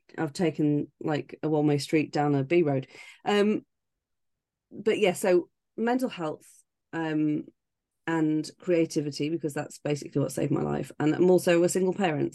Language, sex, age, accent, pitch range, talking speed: English, female, 30-49, British, 145-175 Hz, 160 wpm